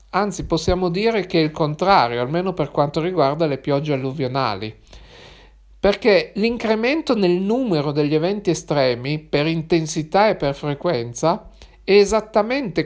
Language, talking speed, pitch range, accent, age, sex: Italian, 130 wpm, 150-195 Hz, native, 50-69, male